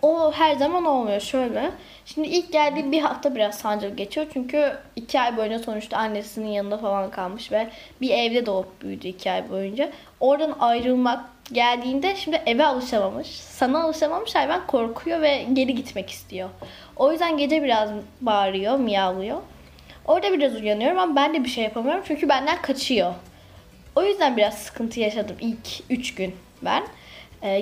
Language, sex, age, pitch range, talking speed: Turkish, female, 10-29, 205-295 Hz, 155 wpm